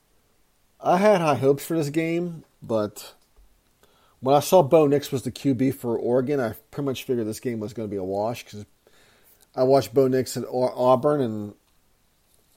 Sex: male